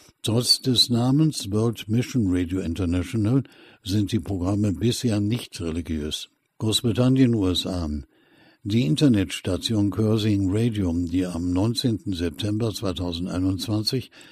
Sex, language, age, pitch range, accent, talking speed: male, German, 60-79, 90-115 Hz, German, 100 wpm